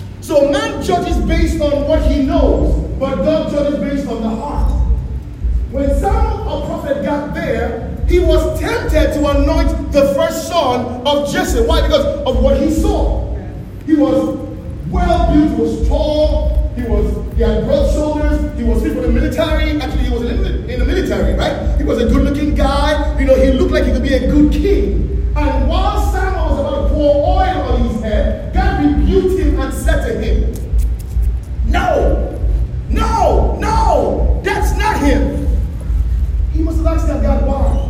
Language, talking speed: English, 180 wpm